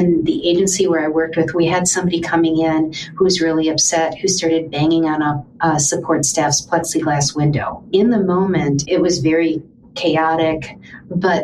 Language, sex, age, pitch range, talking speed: English, female, 50-69, 155-175 Hz, 180 wpm